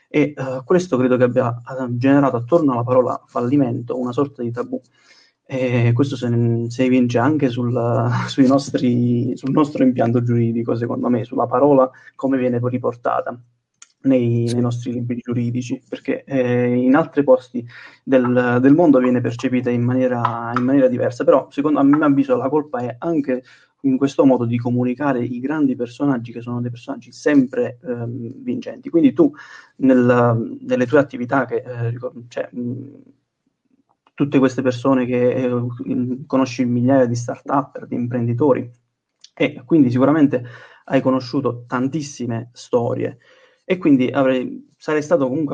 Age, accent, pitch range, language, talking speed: 20-39, native, 120-140 Hz, Italian, 150 wpm